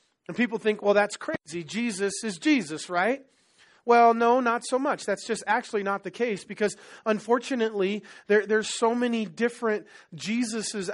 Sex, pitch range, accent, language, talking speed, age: male, 190-230 Hz, American, English, 160 wpm, 30-49